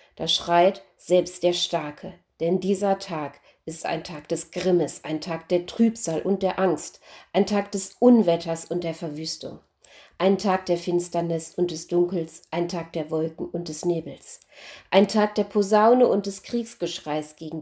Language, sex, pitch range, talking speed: German, female, 165-190 Hz, 165 wpm